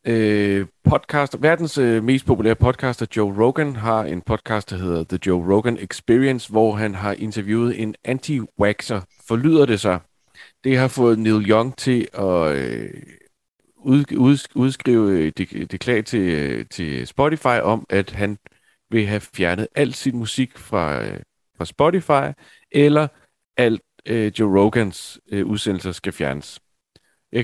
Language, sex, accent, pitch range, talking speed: Danish, male, native, 95-120 Hz, 130 wpm